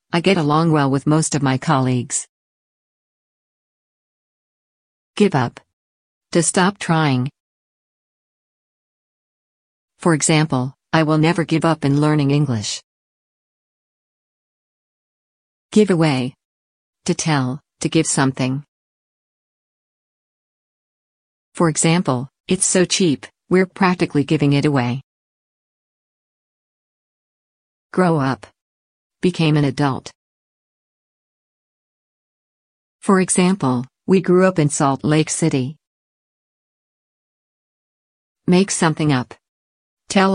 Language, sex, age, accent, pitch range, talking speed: English, female, 50-69, American, 135-175 Hz, 90 wpm